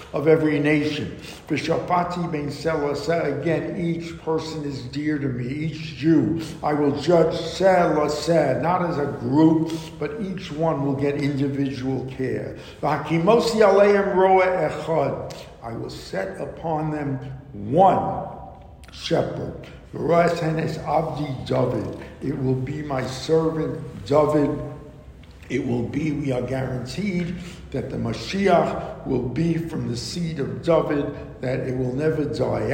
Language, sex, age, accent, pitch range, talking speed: English, male, 60-79, American, 140-175 Hz, 110 wpm